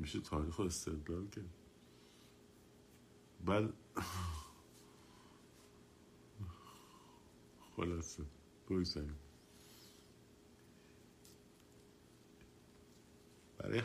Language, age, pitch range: Persian, 50-69, 75-95 Hz